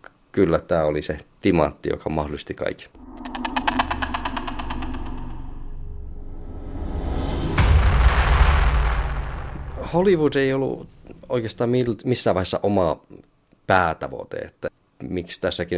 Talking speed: 70 wpm